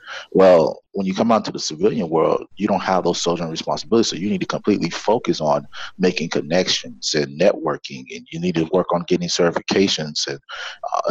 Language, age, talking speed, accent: English, 30-49, 195 wpm, American